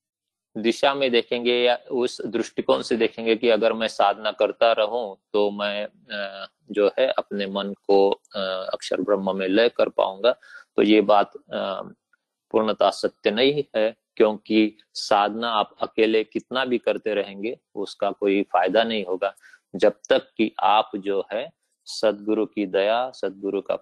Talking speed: 145 wpm